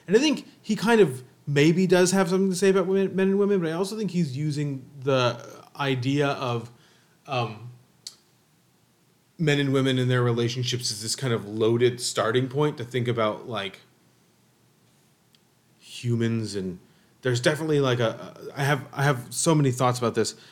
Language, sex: English, male